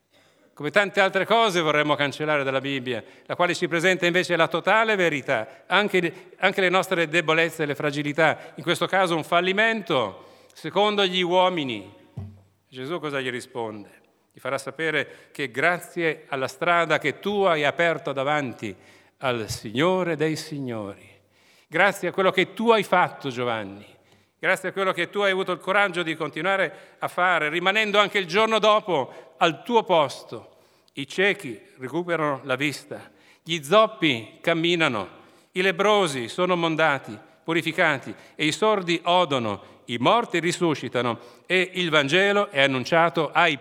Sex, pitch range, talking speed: male, 135-185 Hz, 145 wpm